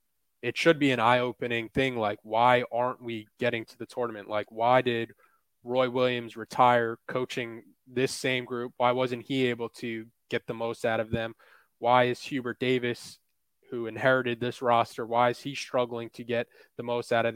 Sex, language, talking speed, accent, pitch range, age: male, English, 185 wpm, American, 115-130 Hz, 20-39